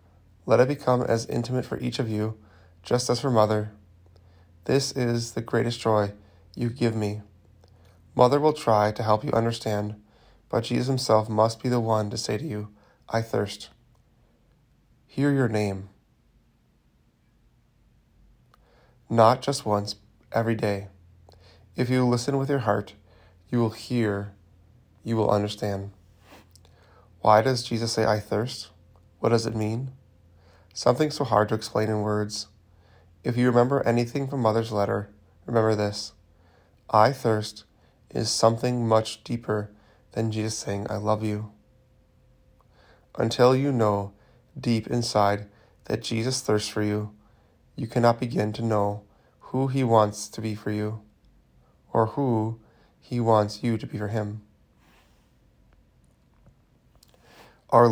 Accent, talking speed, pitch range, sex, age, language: American, 135 wpm, 100-120 Hz, male, 20-39, English